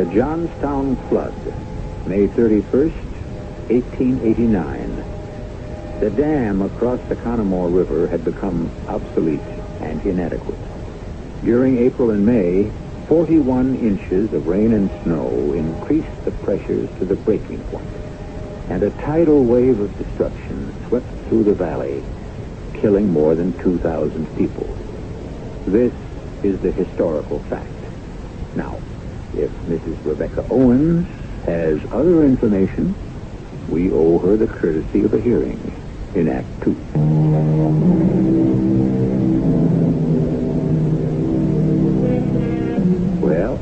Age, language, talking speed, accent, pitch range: 70-89, English, 100 wpm, American, 80-130 Hz